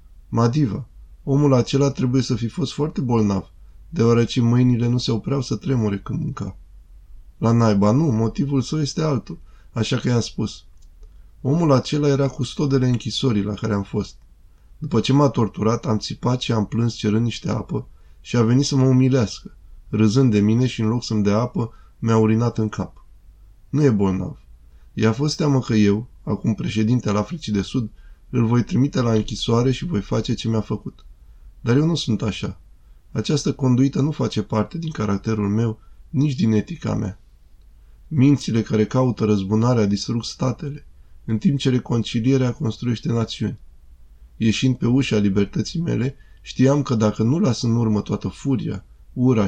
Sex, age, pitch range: male, 20-39, 100-130 Hz